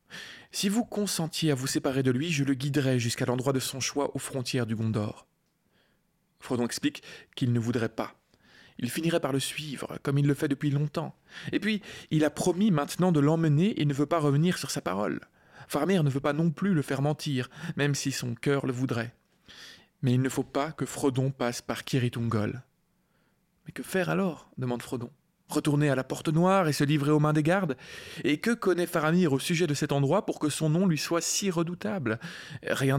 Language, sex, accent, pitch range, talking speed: French, male, French, 130-160 Hz, 215 wpm